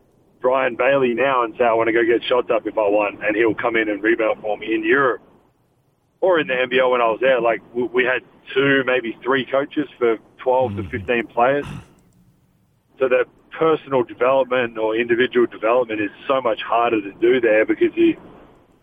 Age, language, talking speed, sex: 40-59, English, 195 wpm, male